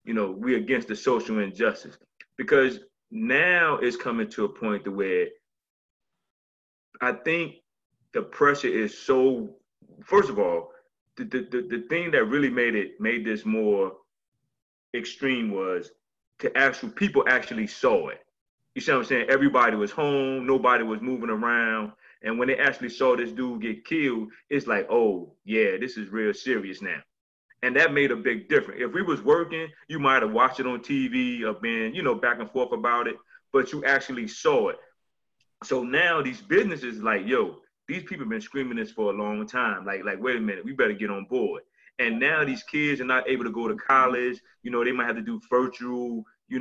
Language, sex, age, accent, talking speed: English, male, 30-49, American, 195 wpm